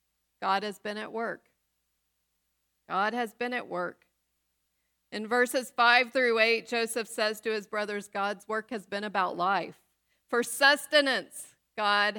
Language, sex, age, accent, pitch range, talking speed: English, female, 40-59, American, 175-230 Hz, 145 wpm